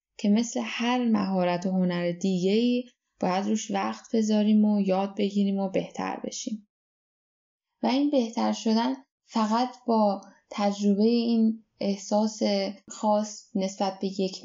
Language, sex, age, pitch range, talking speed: Persian, female, 10-29, 180-235 Hz, 125 wpm